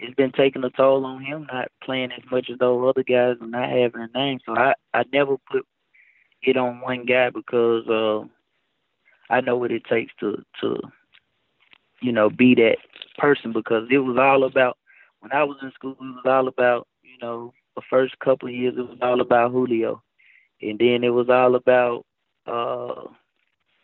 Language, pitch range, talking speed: English, 120-135 Hz, 195 wpm